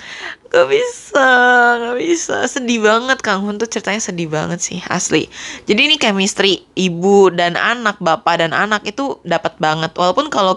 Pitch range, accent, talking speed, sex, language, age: 170-235 Hz, native, 160 wpm, female, Indonesian, 20-39